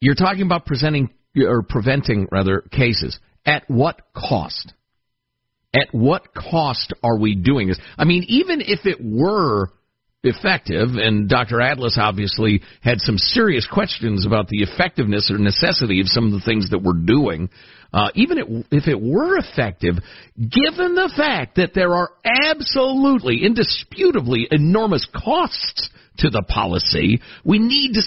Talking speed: 145 wpm